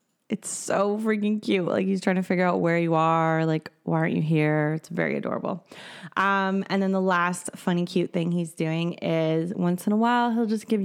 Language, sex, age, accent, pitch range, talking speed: English, female, 20-39, American, 165-205 Hz, 215 wpm